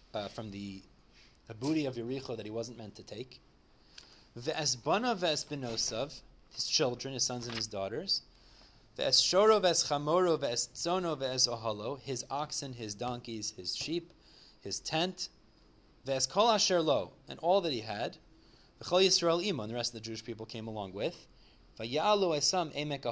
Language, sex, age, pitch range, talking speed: English, male, 30-49, 115-160 Hz, 150 wpm